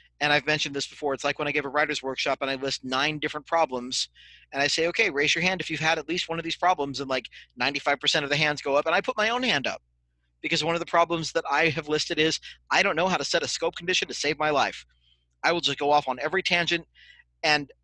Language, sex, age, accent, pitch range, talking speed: English, male, 40-59, American, 140-170 Hz, 275 wpm